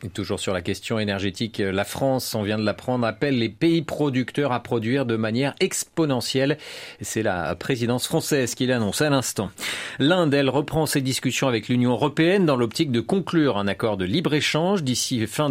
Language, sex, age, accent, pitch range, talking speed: French, male, 40-59, French, 105-140 Hz, 180 wpm